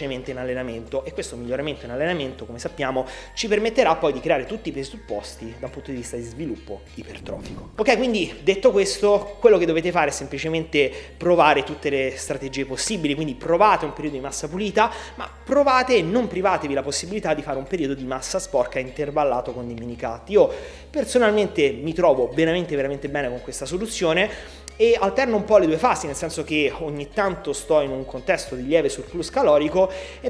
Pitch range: 135-190 Hz